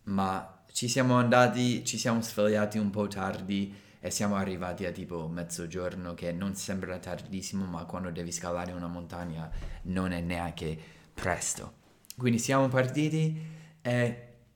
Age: 20-39